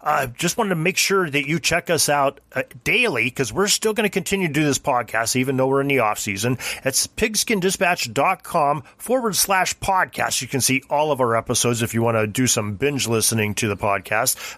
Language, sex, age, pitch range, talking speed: English, male, 30-49, 115-145 Hz, 230 wpm